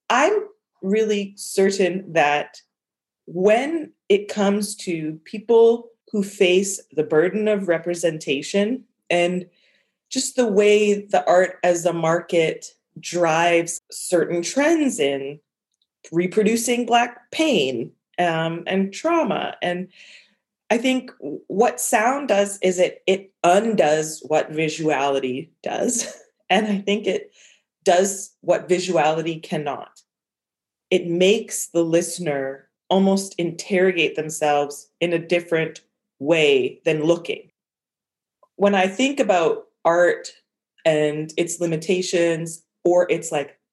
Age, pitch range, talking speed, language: 30-49, 165-210 Hz, 110 wpm, English